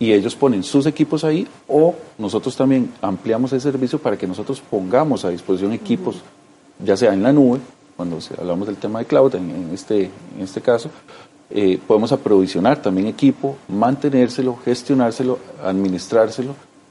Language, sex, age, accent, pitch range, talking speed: Spanish, male, 40-59, Colombian, 100-135 Hz, 155 wpm